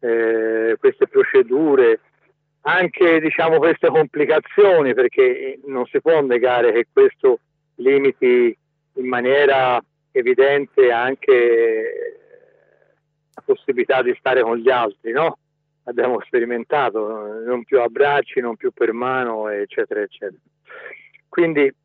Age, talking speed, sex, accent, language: 50-69, 110 wpm, male, native, Italian